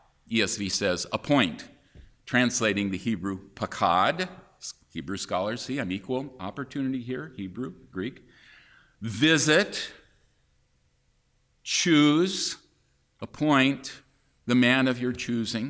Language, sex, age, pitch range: English, male, 50-69, 110-145 Hz